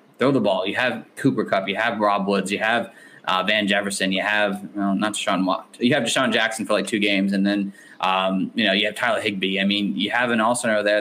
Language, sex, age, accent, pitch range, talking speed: English, male, 20-39, American, 100-125 Hz, 250 wpm